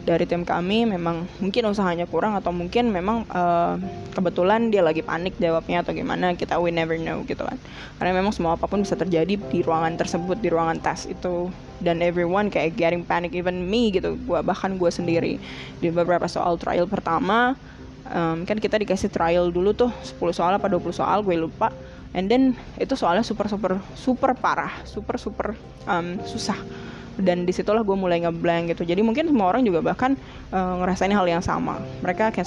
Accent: native